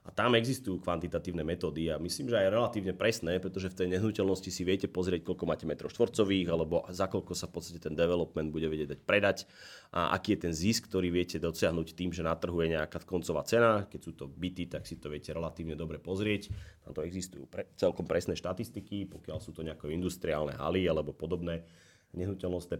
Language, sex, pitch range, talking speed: Czech, male, 85-100 Hz, 200 wpm